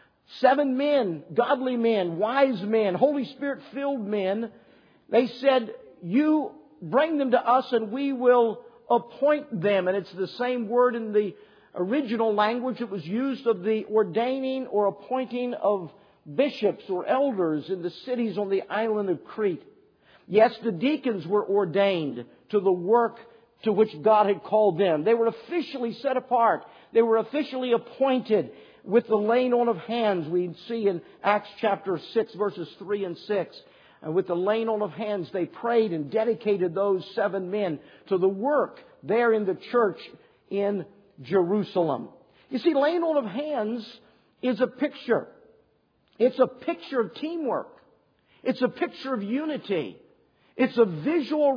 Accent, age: American, 50-69